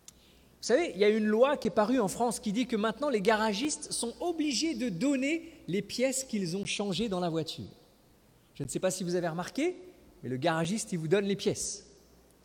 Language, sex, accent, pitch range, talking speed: French, male, French, 170-240 Hz, 220 wpm